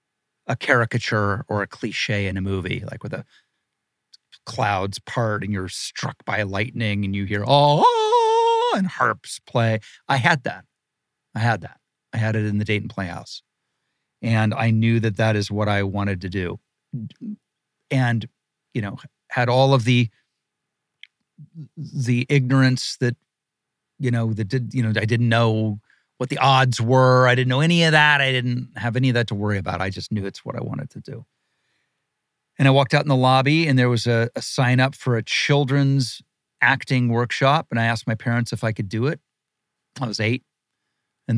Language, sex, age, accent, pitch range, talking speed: English, male, 40-59, American, 110-135 Hz, 185 wpm